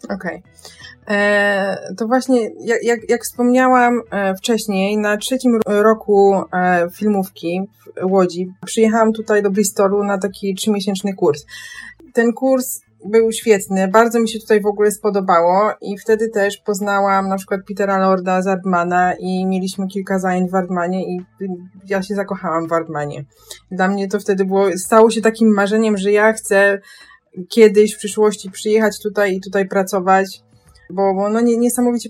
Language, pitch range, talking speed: Polish, 195-230 Hz, 145 wpm